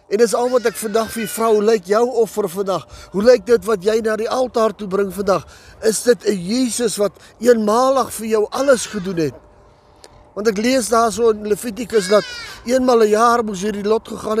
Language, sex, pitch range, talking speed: English, male, 155-225 Hz, 215 wpm